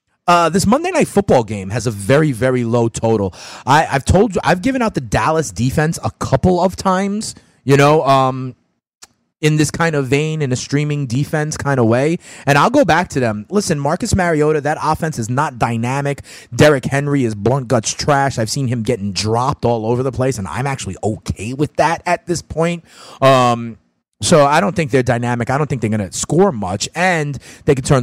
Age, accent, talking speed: 30-49, American, 210 wpm